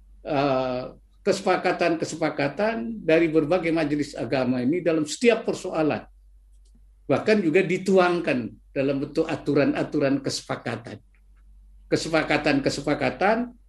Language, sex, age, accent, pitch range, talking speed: Indonesian, male, 50-69, native, 125-190 Hz, 75 wpm